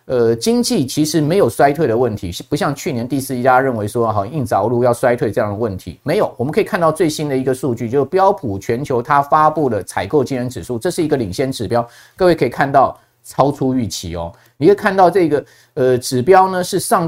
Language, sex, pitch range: Chinese, male, 125-170 Hz